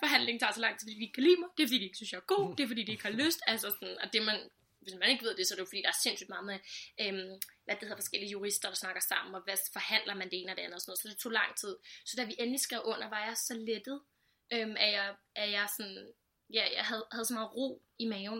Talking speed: 315 wpm